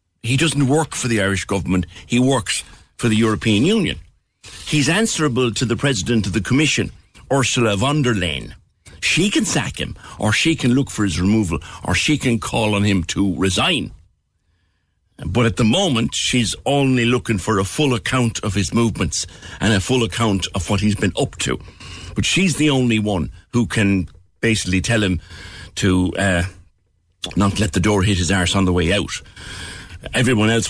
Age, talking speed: 60-79, 180 wpm